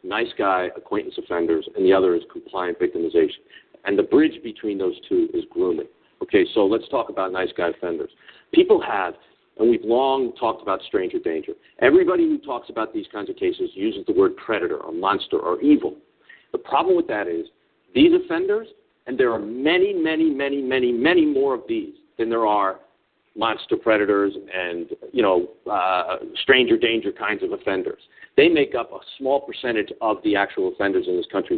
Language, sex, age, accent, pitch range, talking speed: English, male, 50-69, American, 325-390 Hz, 180 wpm